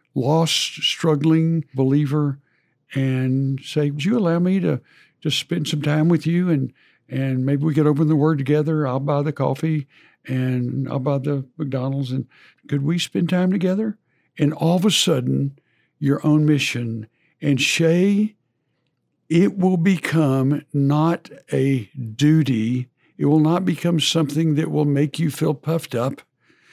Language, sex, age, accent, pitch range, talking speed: English, male, 60-79, American, 130-160 Hz, 155 wpm